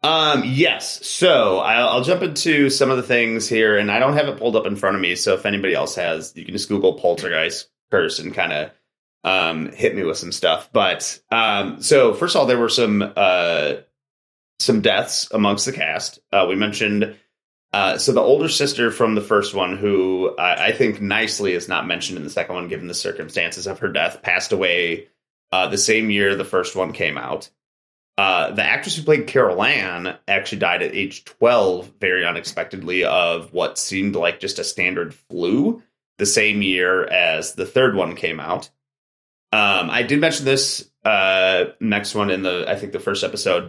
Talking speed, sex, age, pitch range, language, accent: 200 wpm, male, 30-49, 100-135 Hz, English, American